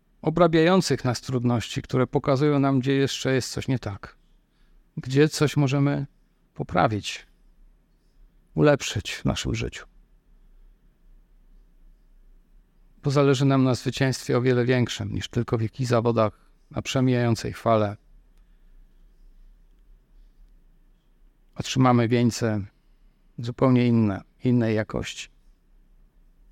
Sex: male